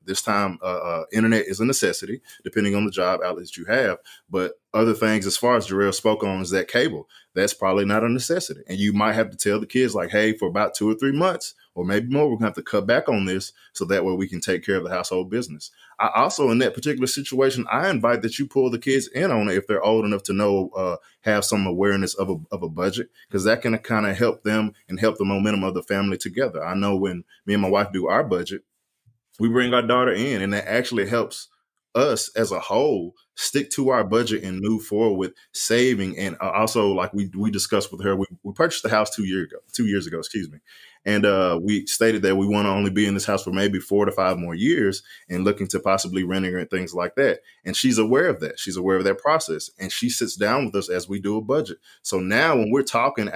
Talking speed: 250 wpm